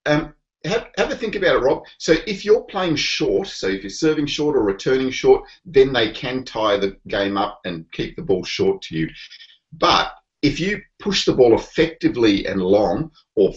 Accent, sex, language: Australian, male, English